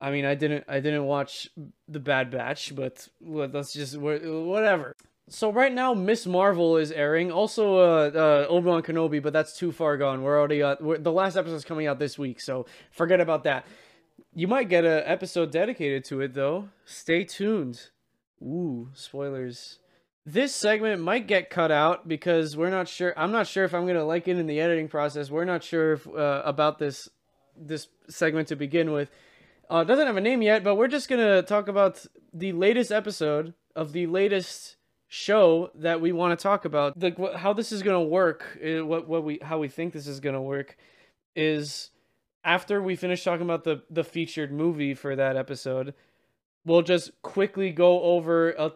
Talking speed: 195 wpm